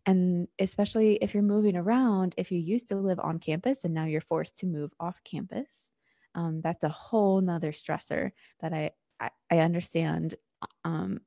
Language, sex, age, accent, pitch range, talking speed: English, female, 20-39, American, 170-215 Hz, 175 wpm